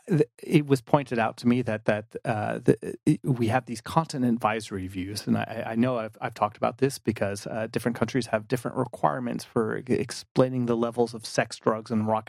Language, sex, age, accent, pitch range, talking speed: English, male, 30-49, American, 105-130 Hz, 205 wpm